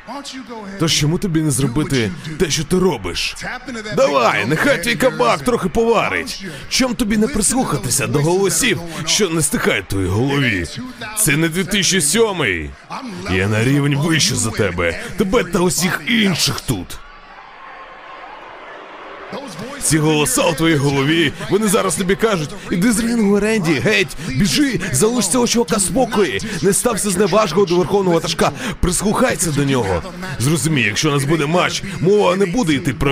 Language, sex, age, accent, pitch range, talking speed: Ukrainian, male, 30-49, native, 140-210 Hz, 145 wpm